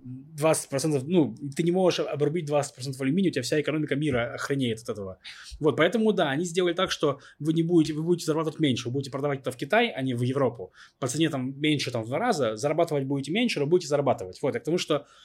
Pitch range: 130-165 Hz